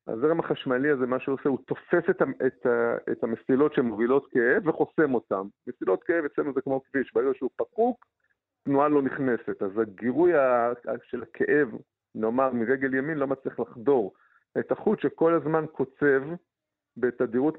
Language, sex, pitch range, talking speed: Hebrew, male, 120-160 Hz, 155 wpm